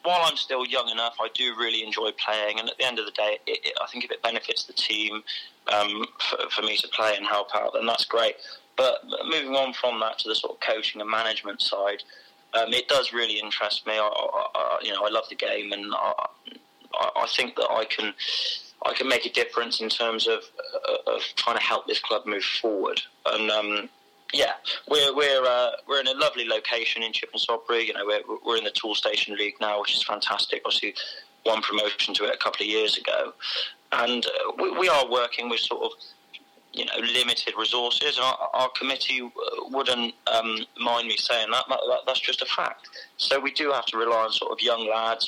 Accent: British